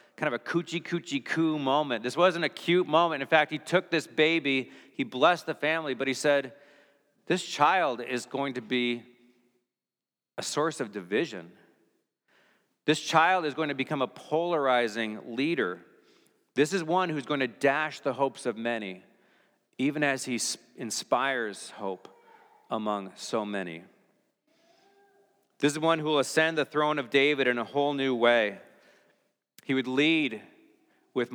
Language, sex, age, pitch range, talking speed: English, male, 40-59, 120-155 Hz, 155 wpm